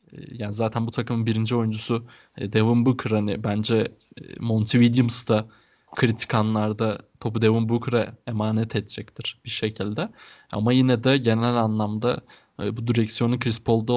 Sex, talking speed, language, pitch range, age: male, 130 wpm, Turkish, 110-125 Hz, 20-39